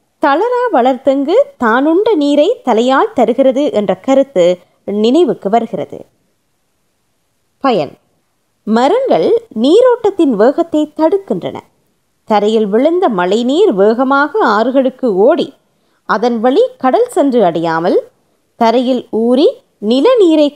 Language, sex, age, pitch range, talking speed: Tamil, female, 20-39, 220-330 Hz, 90 wpm